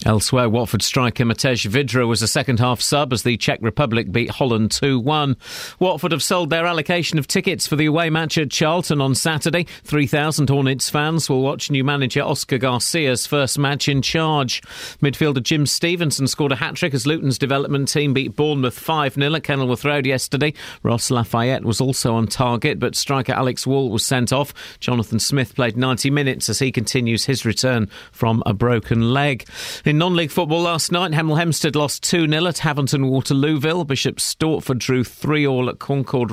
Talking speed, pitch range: 175 wpm, 120-150 Hz